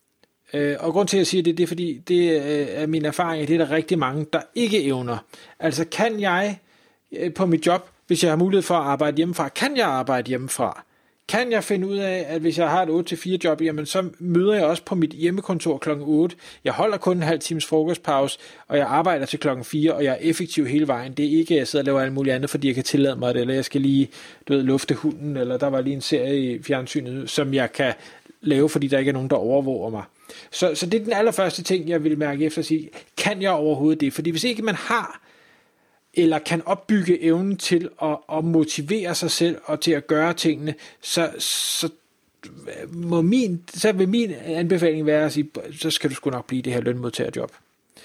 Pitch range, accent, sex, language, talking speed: 145-175 Hz, native, male, Danish, 230 wpm